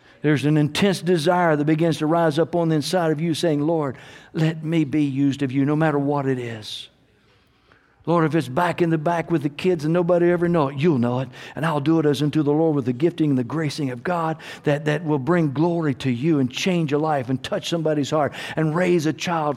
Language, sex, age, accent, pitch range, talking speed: English, male, 60-79, American, 140-175 Hz, 245 wpm